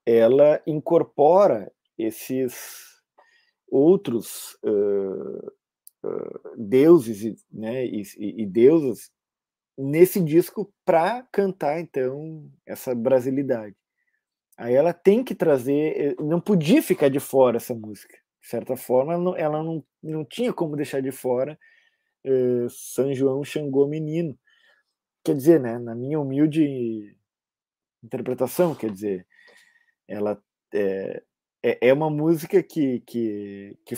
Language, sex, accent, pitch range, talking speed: Portuguese, male, Brazilian, 130-200 Hz, 115 wpm